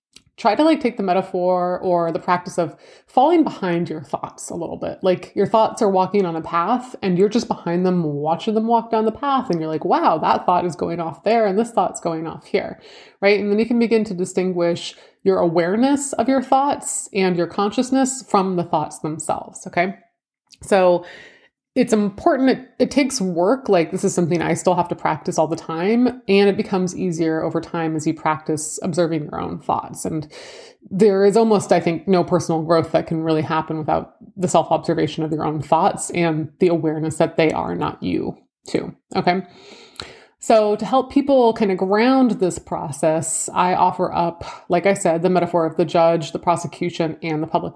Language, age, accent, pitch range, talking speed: English, 20-39, American, 170-220 Hz, 200 wpm